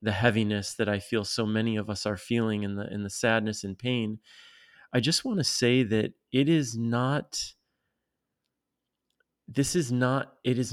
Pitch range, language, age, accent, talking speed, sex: 110-125 Hz, English, 30-49, American, 180 wpm, male